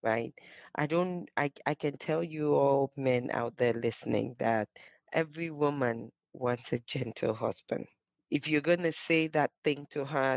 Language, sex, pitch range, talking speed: English, female, 130-170 Hz, 160 wpm